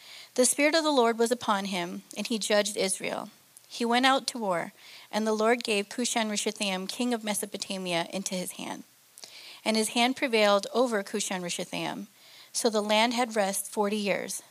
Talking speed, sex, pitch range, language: 170 wpm, female, 195-235 Hz, English